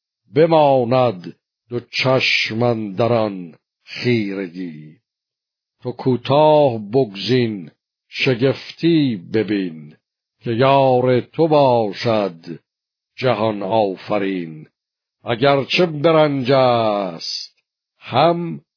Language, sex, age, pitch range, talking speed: Persian, male, 60-79, 110-135 Hz, 65 wpm